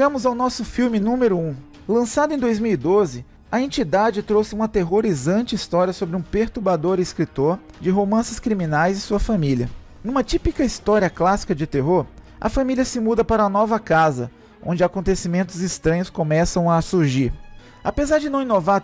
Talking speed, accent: 155 wpm, Brazilian